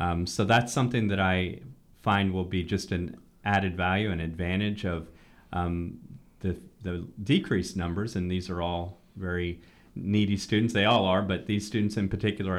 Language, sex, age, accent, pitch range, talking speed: English, male, 30-49, American, 85-100 Hz, 170 wpm